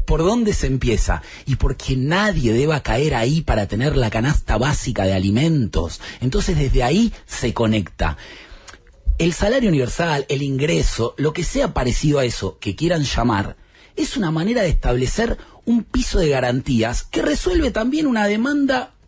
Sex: male